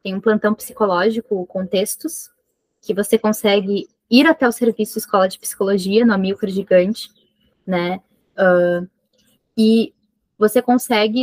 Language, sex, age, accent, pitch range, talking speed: Portuguese, female, 10-29, Brazilian, 190-230 Hz, 120 wpm